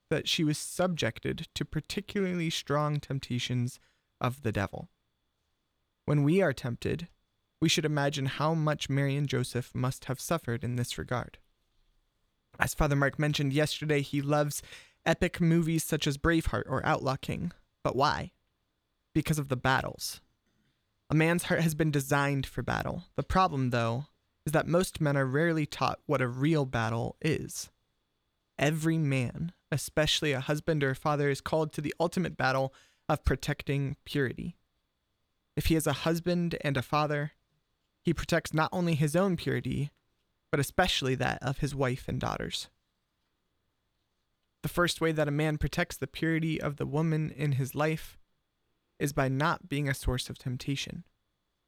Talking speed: 160 wpm